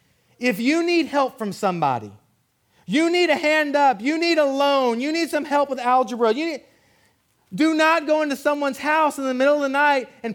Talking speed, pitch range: 210 wpm, 185-300 Hz